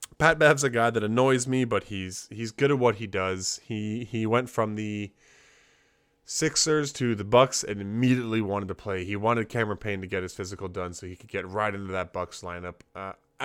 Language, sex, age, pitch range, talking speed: English, male, 20-39, 100-125 Hz, 215 wpm